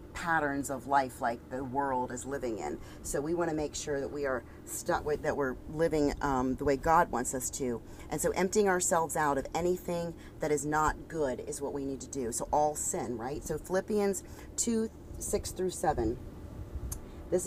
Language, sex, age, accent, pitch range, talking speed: English, female, 40-59, American, 130-180 Hz, 200 wpm